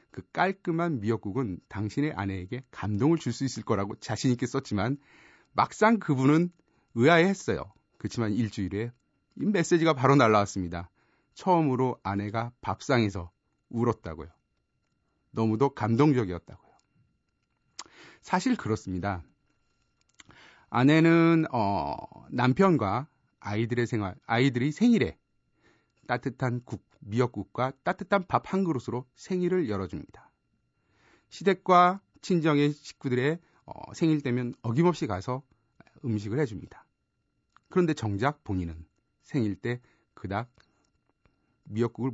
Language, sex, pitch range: Korean, male, 105-155 Hz